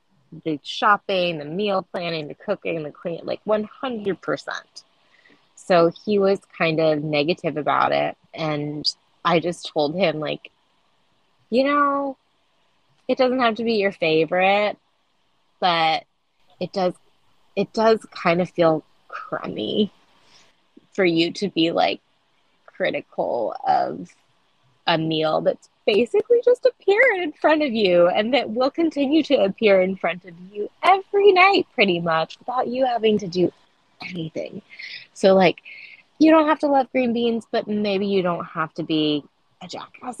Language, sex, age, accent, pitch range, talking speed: English, female, 20-39, American, 165-245 Hz, 145 wpm